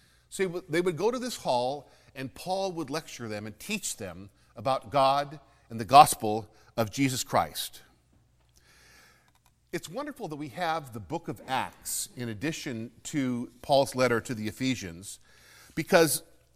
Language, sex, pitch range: English, male, 120-170 Hz